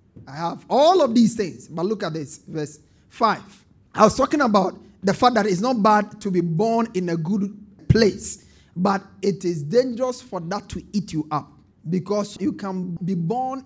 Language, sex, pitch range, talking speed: English, male, 160-205 Hz, 195 wpm